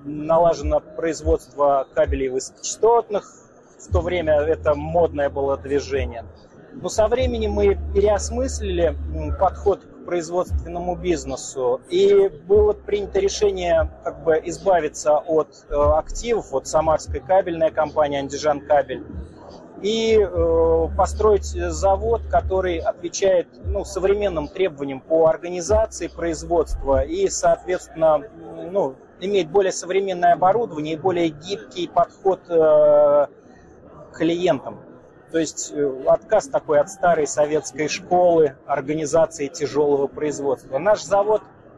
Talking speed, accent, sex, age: 110 wpm, native, male, 30-49